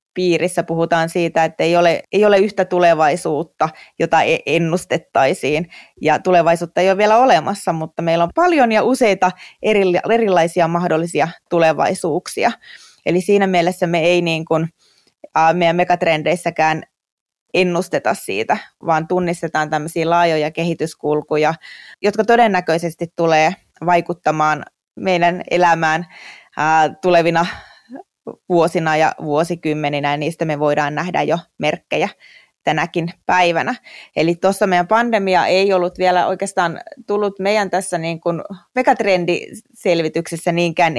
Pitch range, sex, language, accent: 160-180 Hz, female, Finnish, native